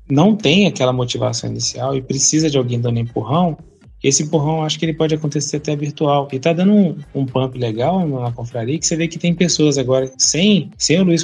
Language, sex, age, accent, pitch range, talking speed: Portuguese, male, 20-39, Brazilian, 130-165 Hz, 220 wpm